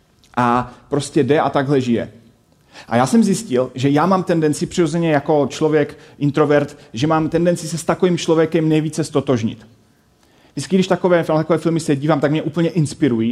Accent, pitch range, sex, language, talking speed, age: native, 125-155 Hz, male, Czech, 170 wpm, 30-49